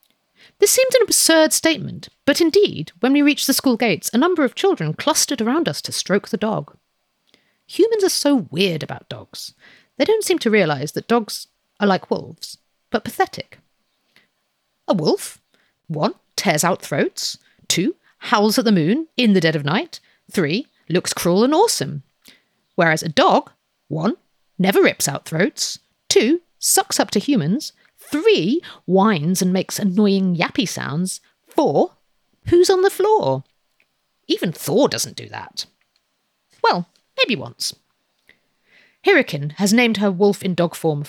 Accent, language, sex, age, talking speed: British, English, female, 40-59, 150 wpm